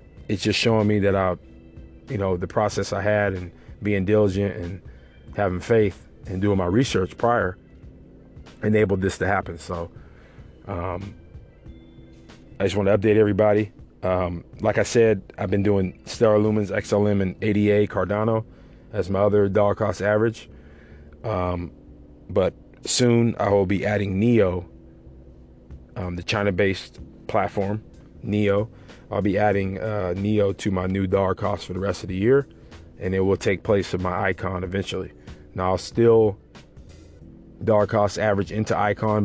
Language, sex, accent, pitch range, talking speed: English, male, American, 90-105 Hz, 155 wpm